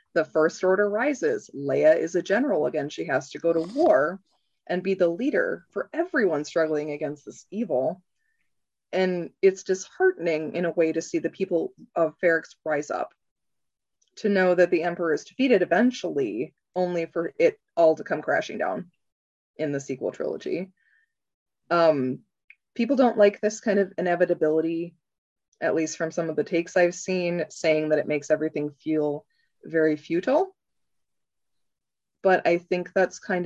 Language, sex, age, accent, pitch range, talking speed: English, female, 20-39, American, 155-195 Hz, 160 wpm